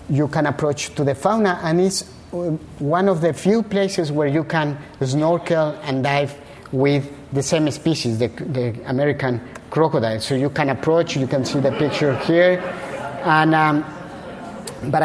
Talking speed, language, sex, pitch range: 160 wpm, English, male, 135-165 Hz